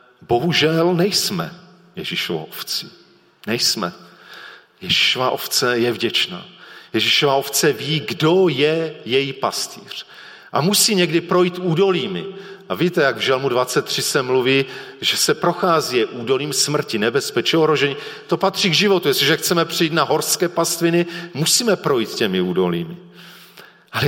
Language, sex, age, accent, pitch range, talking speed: Czech, male, 40-59, native, 145-195 Hz, 125 wpm